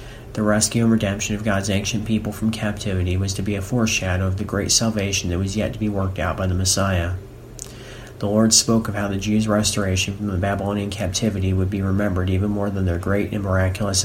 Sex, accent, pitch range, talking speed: male, American, 95-110 Hz, 220 wpm